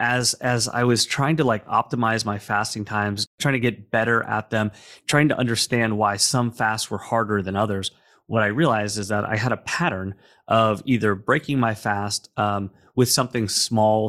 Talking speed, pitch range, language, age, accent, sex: 190 wpm, 105-120 Hz, English, 30-49, American, male